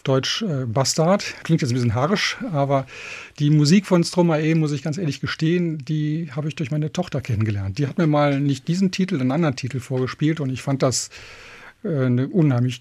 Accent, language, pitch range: German, German, 130-160 Hz